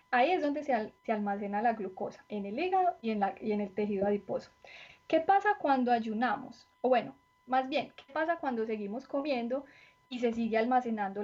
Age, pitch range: 10-29, 220-280 Hz